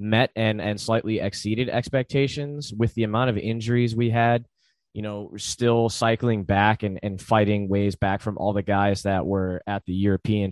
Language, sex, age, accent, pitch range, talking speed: English, male, 20-39, American, 100-115 Hz, 190 wpm